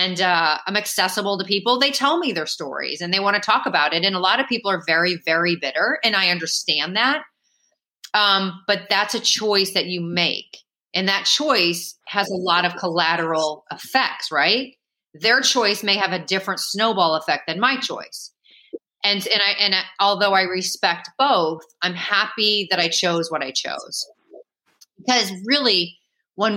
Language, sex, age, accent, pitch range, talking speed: English, female, 30-49, American, 170-225 Hz, 180 wpm